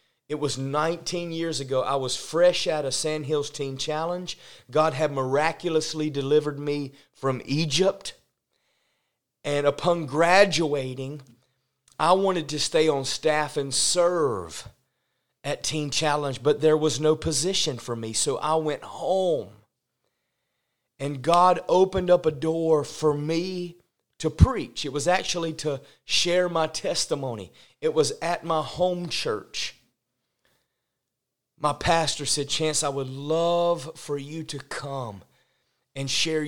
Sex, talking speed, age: male, 135 wpm, 30-49